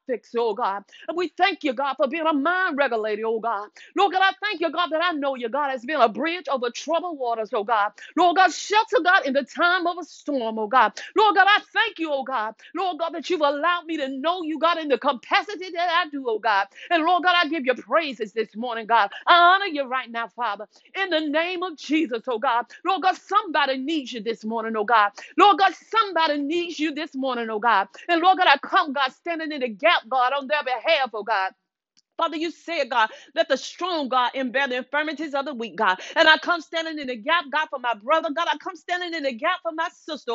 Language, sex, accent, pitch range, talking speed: English, female, American, 255-350 Hz, 245 wpm